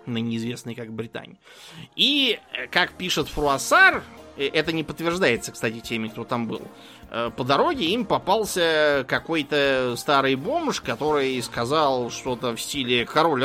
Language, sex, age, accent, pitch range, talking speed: Russian, male, 20-39, native, 120-150 Hz, 130 wpm